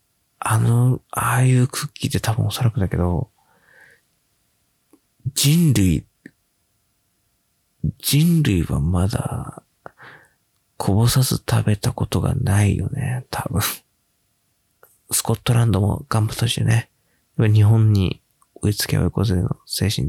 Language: Japanese